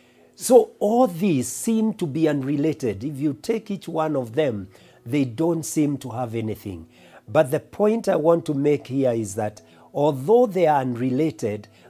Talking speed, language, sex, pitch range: 170 wpm, English, male, 120-160 Hz